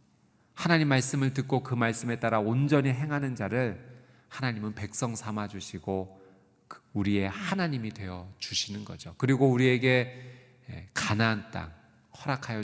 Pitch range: 100-130 Hz